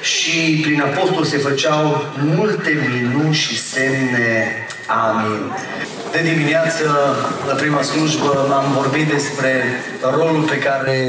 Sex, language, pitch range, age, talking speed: male, Romanian, 130-155 Hz, 30-49, 115 wpm